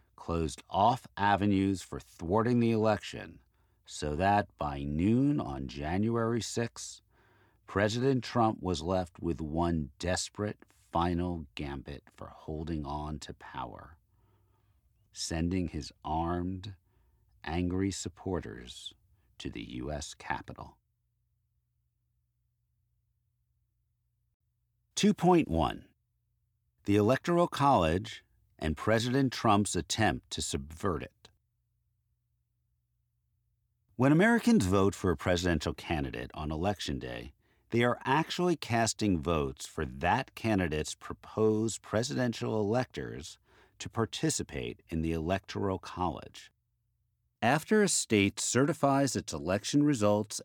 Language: English